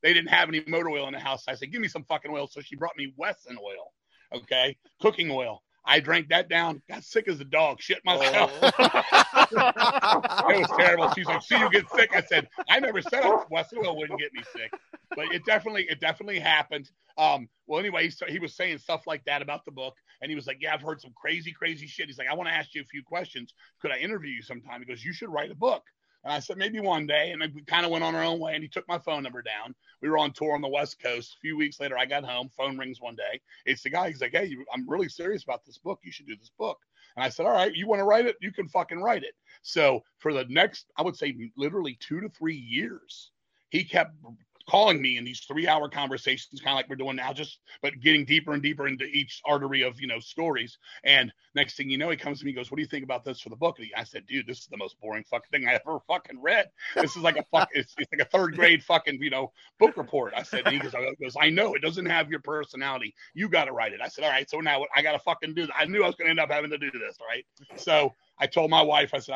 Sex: male